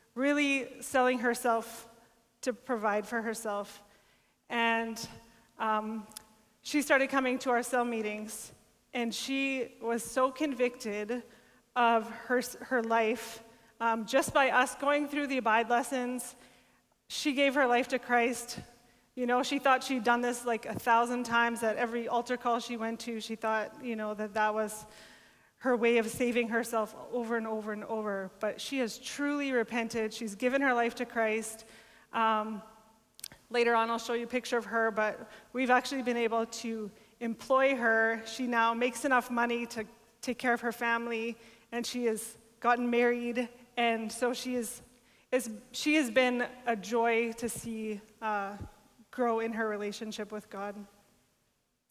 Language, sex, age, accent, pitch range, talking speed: English, female, 30-49, American, 225-245 Hz, 160 wpm